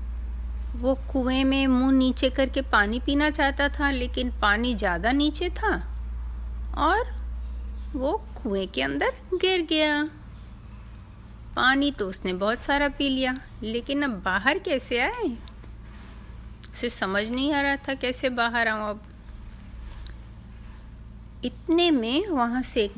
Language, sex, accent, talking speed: Hindi, female, native, 130 wpm